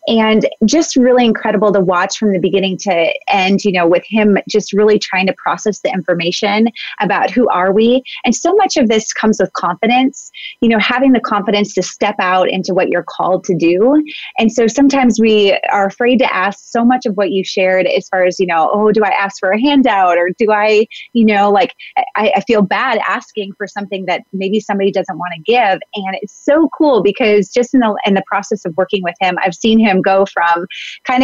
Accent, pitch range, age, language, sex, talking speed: American, 190-245 Hz, 30-49, English, female, 220 wpm